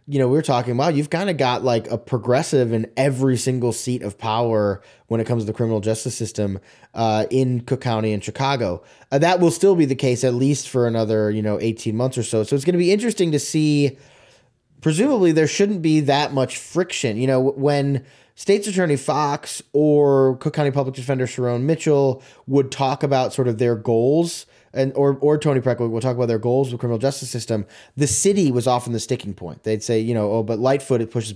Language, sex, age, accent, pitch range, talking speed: English, male, 20-39, American, 120-145 Hz, 220 wpm